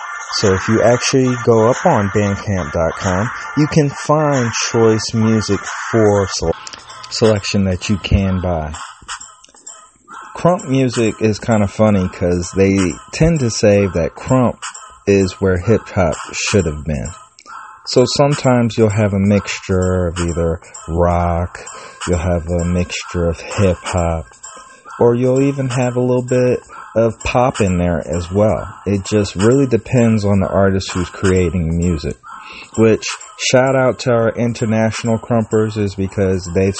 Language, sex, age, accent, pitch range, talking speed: English, male, 30-49, American, 90-110 Hz, 140 wpm